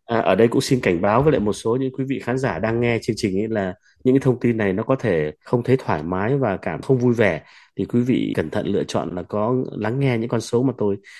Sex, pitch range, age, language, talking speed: male, 95-125 Hz, 20-39, Vietnamese, 285 wpm